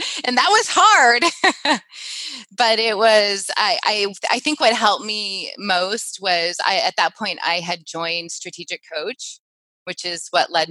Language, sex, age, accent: English, female, 20-39, American